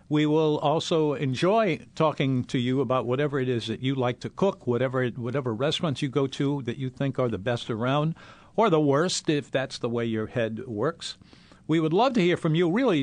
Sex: male